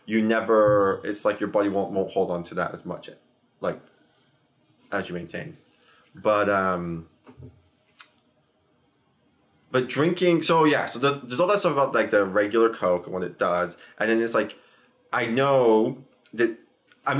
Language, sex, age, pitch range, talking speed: English, male, 20-39, 100-145 Hz, 165 wpm